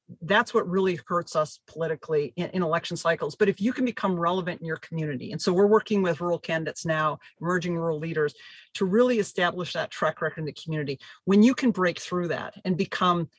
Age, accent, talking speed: 40-59, American, 210 wpm